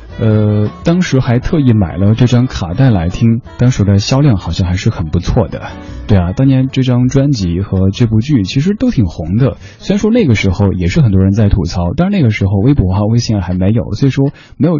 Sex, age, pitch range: male, 20-39, 90-120 Hz